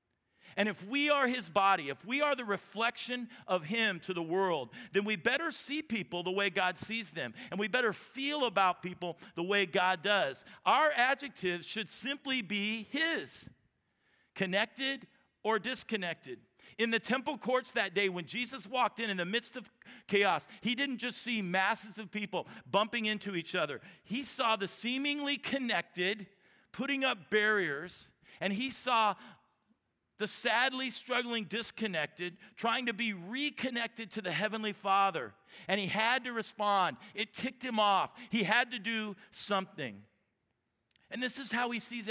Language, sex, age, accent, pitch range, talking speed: English, male, 50-69, American, 195-240 Hz, 160 wpm